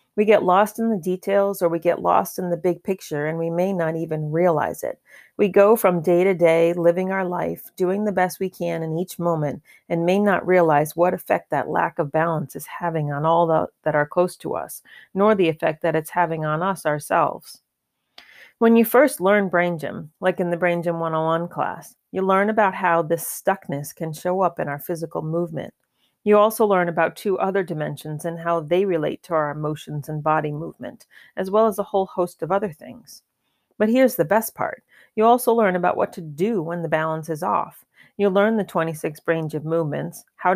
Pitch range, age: 165-195 Hz, 40-59